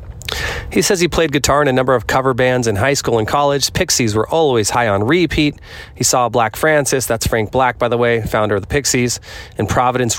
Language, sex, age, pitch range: English, male, 30-49, 105-130 Hz